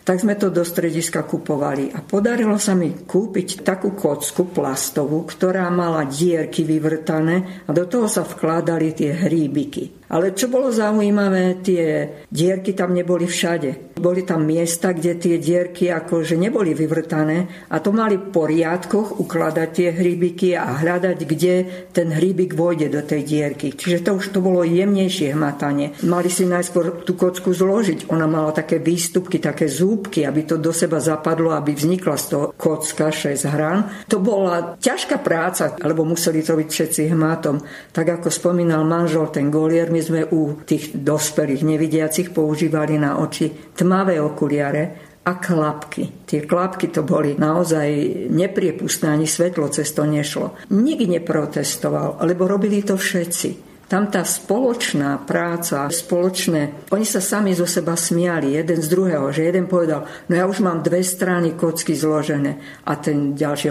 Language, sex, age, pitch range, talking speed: Slovak, female, 50-69, 155-180 Hz, 155 wpm